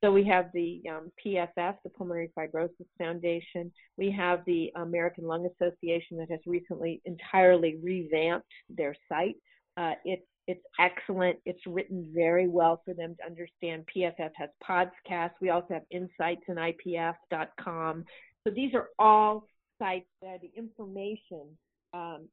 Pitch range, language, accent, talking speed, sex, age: 175-225 Hz, English, American, 145 wpm, female, 40-59